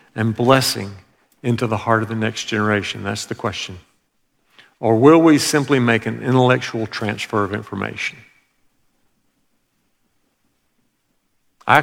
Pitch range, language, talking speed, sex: 110-140 Hz, English, 115 wpm, male